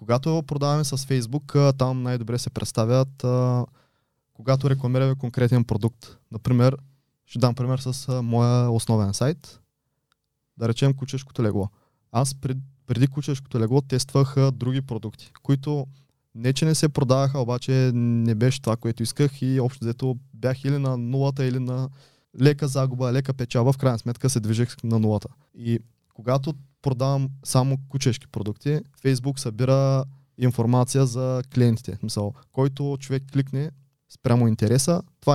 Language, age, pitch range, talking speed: Bulgarian, 20-39, 115-135 Hz, 140 wpm